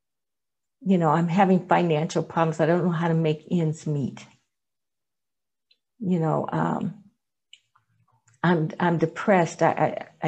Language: English